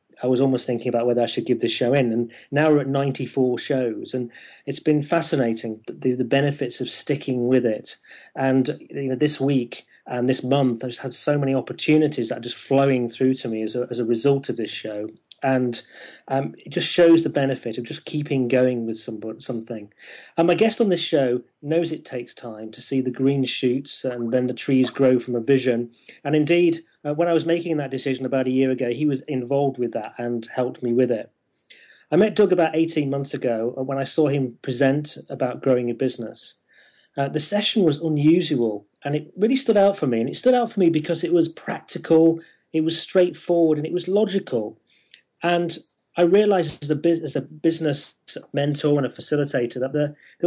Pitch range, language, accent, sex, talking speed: 125-160 Hz, English, British, male, 215 wpm